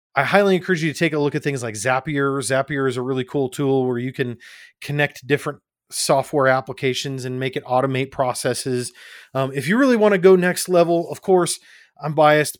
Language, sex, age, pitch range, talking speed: English, male, 30-49, 130-165 Hz, 205 wpm